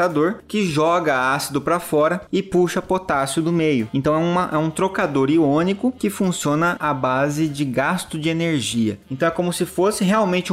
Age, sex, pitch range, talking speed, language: 20-39, male, 130-170 Hz, 175 wpm, Portuguese